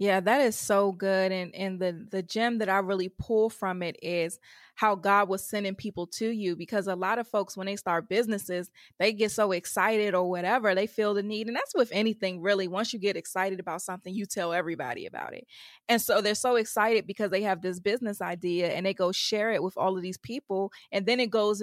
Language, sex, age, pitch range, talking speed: English, female, 20-39, 190-230 Hz, 235 wpm